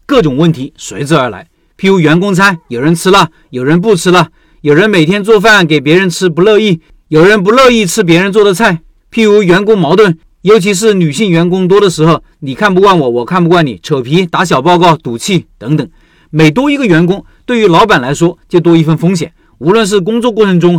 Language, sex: Chinese, male